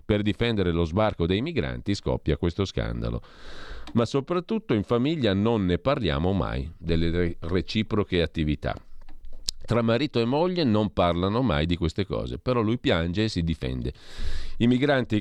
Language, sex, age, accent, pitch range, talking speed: Italian, male, 40-59, native, 85-110 Hz, 150 wpm